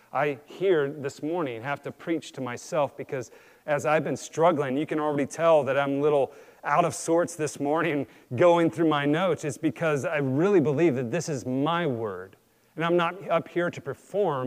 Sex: male